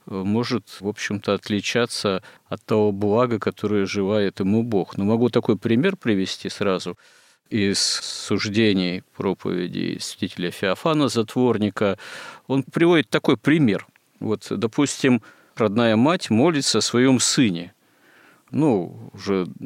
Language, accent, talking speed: Russian, native, 115 wpm